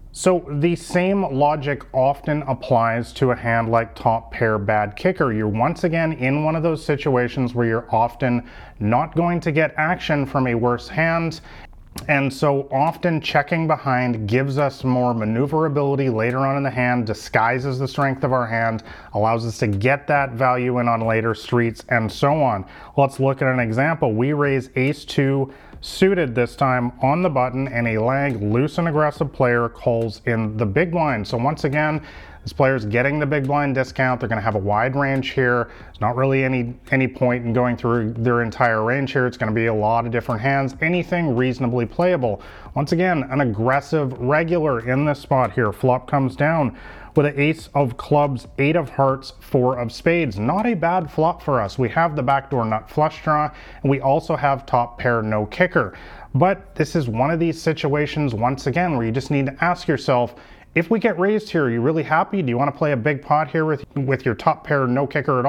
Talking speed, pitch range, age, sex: 205 wpm, 120-150 Hz, 30-49, male